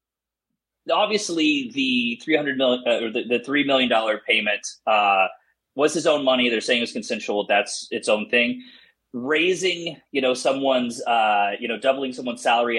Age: 30-49